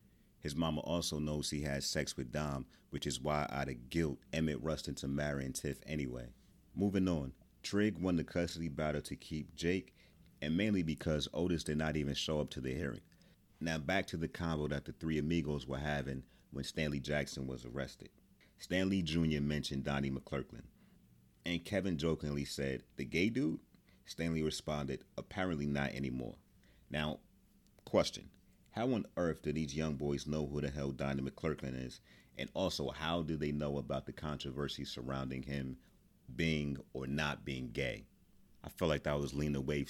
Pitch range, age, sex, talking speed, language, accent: 70-80 Hz, 30-49, male, 175 wpm, English, American